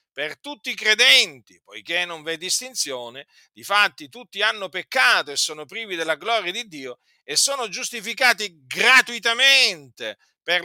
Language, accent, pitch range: Italian, native, 165-240 Hz